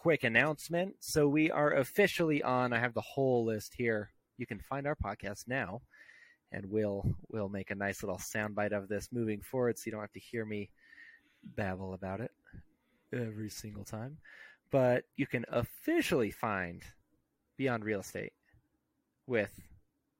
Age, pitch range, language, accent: 30-49, 105-135 Hz, English, American